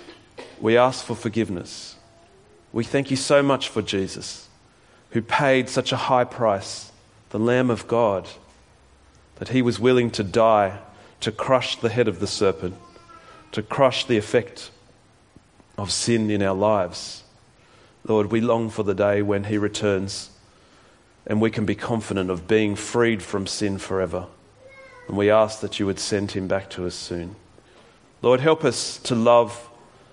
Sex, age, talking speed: male, 40-59, 160 wpm